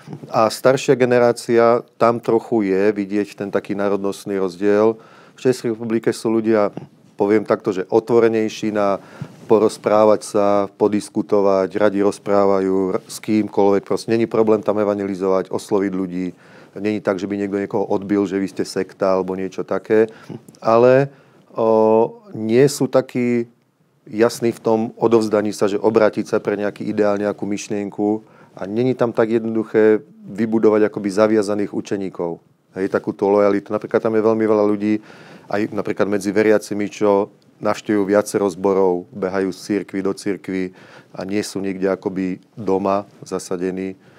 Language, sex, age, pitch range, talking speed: Slovak, male, 40-59, 100-110 Hz, 145 wpm